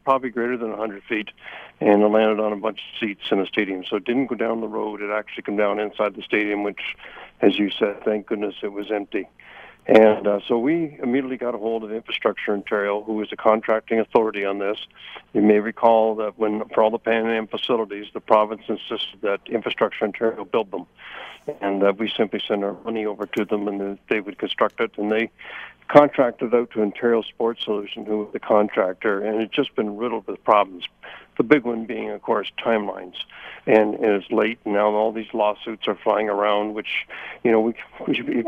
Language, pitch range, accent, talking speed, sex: English, 105-115 Hz, American, 210 wpm, male